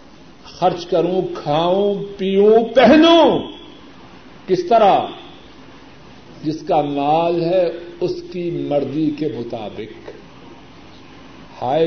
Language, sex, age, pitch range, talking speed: Urdu, male, 50-69, 170-260 Hz, 85 wpm